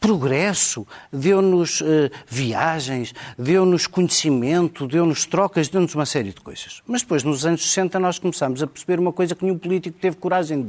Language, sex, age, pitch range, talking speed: Portuguese, male, 50-69, 135-180 Hz, 165 wpm